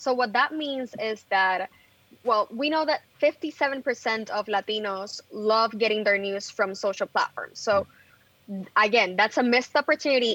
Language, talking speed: English, 150 wpm